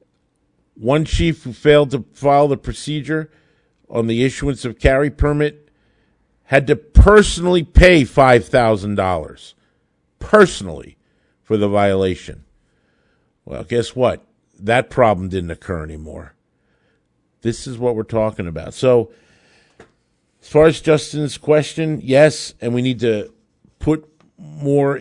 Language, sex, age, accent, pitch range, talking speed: English, male, 50-69, American, 105-135 Hz, 120 wpm